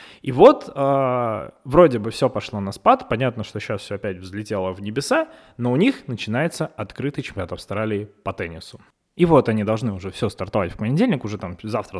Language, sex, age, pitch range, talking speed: Russian, male, 20-39, 105-140 Hz, 190 wpm